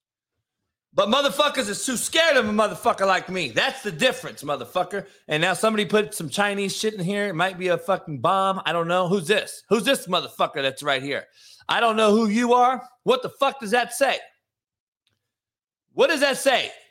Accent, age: American, 30-49